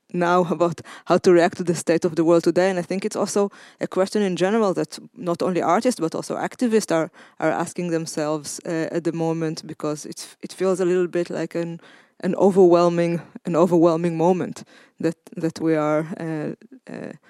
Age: 20-39